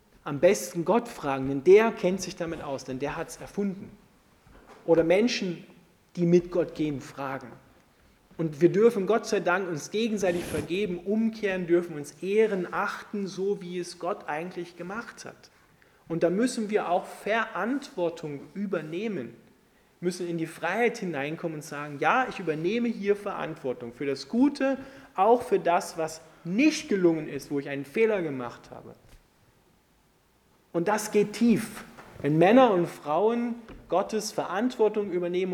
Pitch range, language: 150-200 Hz, German